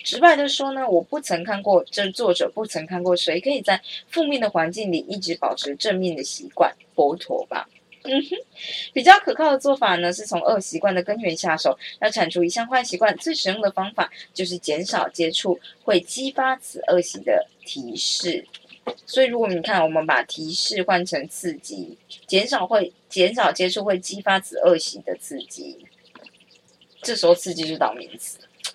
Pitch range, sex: 170-240 Hz, female